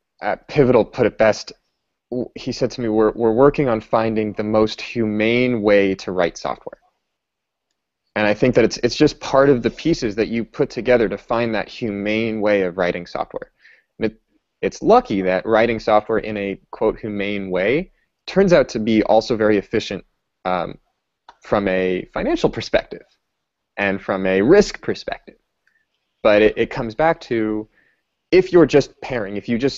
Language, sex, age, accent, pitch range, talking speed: English, male, 20-39, American, 105-125 Hz, 175 wpm